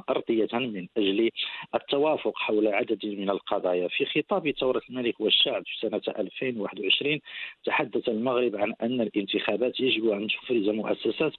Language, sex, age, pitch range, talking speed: English, male, 50-69, 105-135 Hz, 130 wpm